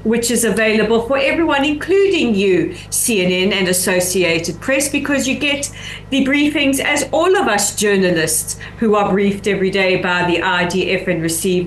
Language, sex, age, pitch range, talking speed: English, female, 40-59, 190-260 Hz, 160 wpm